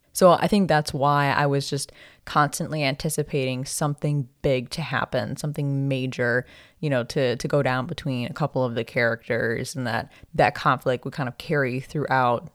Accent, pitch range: American, 135-165 Hz